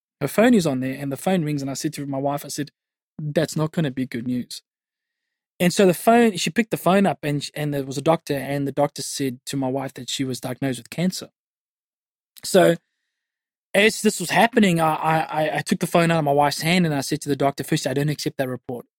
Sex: male